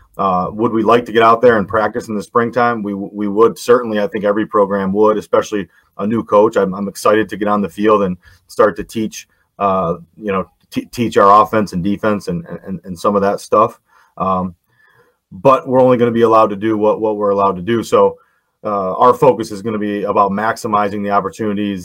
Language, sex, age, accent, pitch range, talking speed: English, male, 30-49, American, 100-110 Hz, 225 wpm